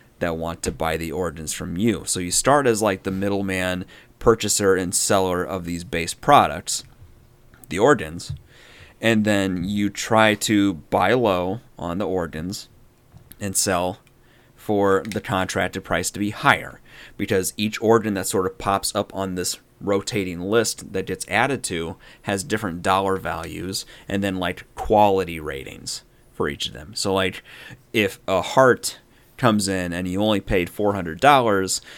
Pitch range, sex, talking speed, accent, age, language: 90-105 Hz, male, 160 wpm, American, 30-49, English